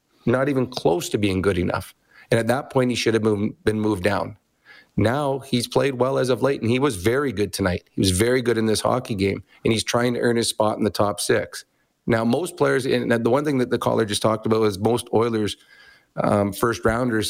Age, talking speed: 40-59, 230 wpm